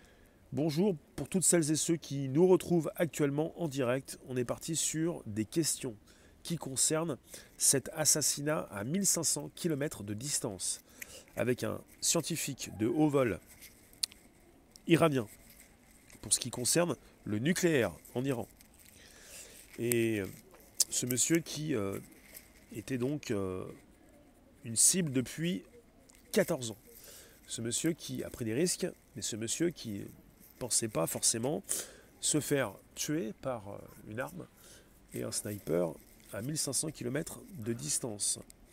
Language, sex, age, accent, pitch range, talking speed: French, male, 30-49, French, 110-155 Hz, 130 wpm